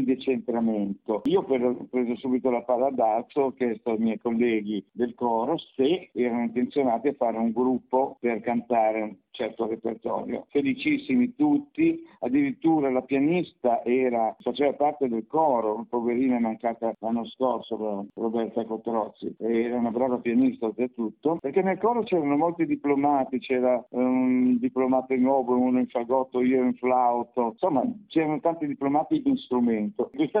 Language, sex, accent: Italian, male, native